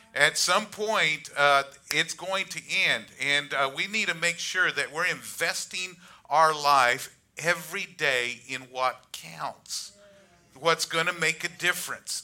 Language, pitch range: English, 135-175 Hz